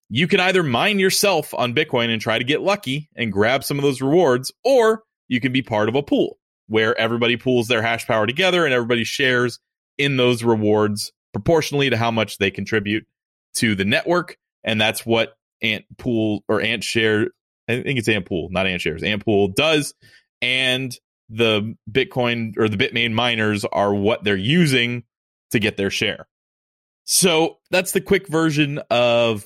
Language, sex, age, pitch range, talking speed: English, male, 30-49, 110-145 Hz, 180 wpm